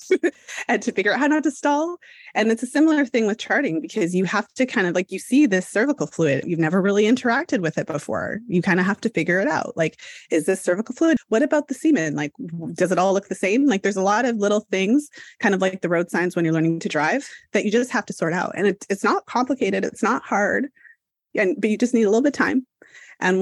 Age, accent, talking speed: 30-49, American, 255 wpm